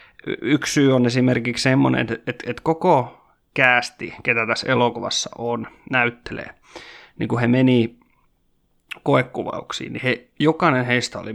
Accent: native